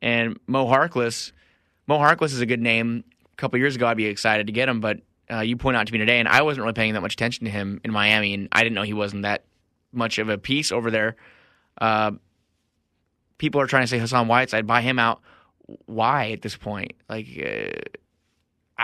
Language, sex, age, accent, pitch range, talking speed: English, male, 20-39, American, 115-150 Hz, 220 wpm